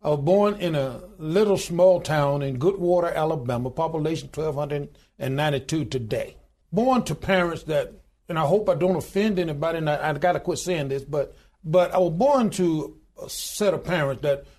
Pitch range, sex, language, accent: 150-190 Hz, male, English, American